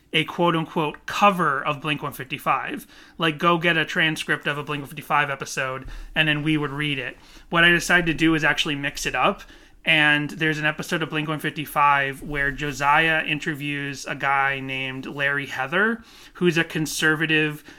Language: English